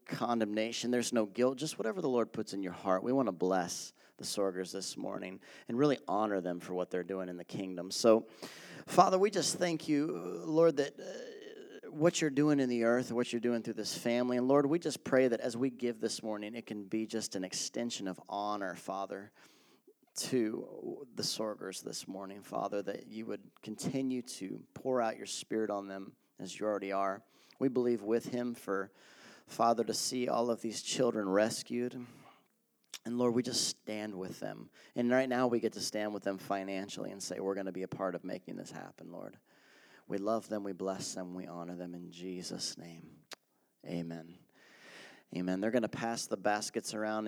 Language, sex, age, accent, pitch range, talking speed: English, male, 30-49, American, 95-120 Hz, 200 wpm